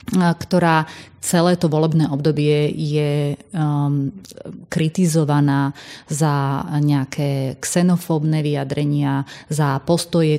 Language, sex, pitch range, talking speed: Slovak, female, 145-160 Hz, 80 wpm